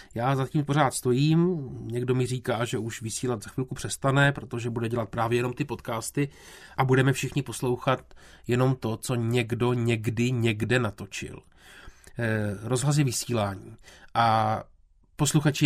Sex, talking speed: male, 140 wpm